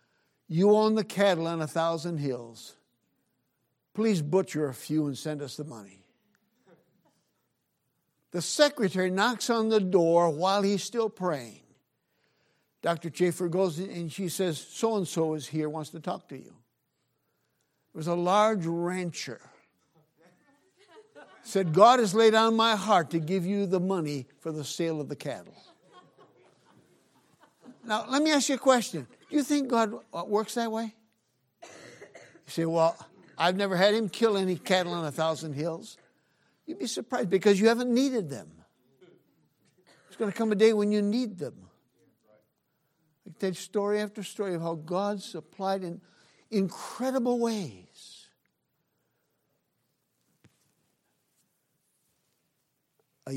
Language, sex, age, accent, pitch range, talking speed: English, male, 60-79, American, 155-210 Hz, 145 wpm